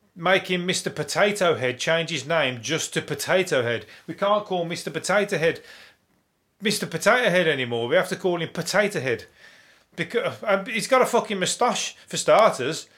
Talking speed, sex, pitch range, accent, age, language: 165 wpm, male, 160-215 Hz, British, 30-49, English